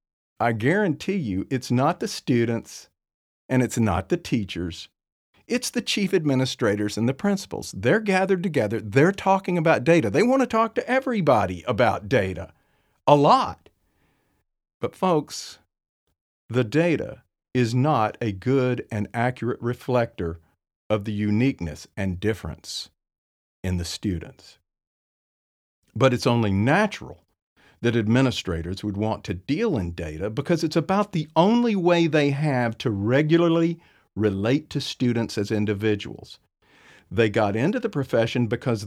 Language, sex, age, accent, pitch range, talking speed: English, male, 50-69, American, 100-150 Hz, 135 wpm